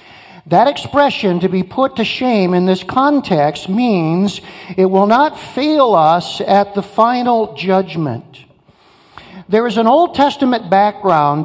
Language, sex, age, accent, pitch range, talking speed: English, male, 50-69, American, 180-245 Hz, 135 wpm